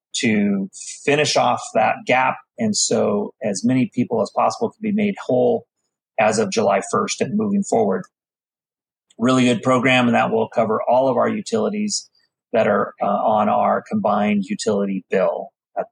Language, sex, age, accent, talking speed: English, male, 30-49, American, 160 wpm